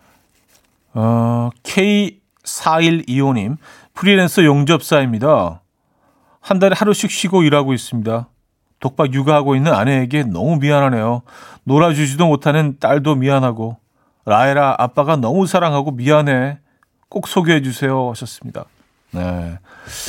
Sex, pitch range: male, 105-150 Hz